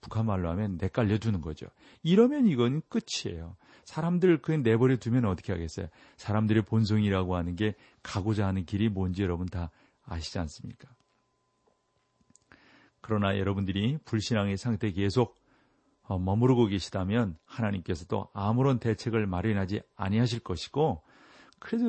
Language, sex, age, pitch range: Korean, male, 40-59, 90-120 Hz